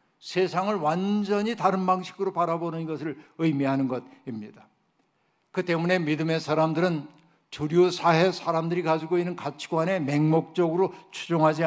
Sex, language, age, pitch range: male, Korean, 60-79, 145-170 Hz